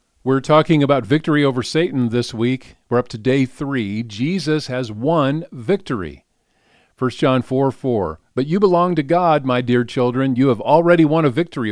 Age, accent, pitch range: 50-69, American, 110-155 Hz